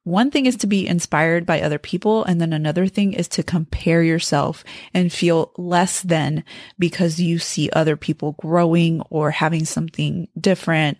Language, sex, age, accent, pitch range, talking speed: English, female, 30-49, American, 155-185 Hz, 170 wpm